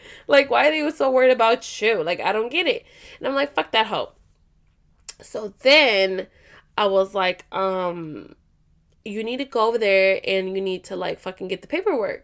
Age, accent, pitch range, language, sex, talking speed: 20-39, American, 200-280 Hz, English, female, 195 wpm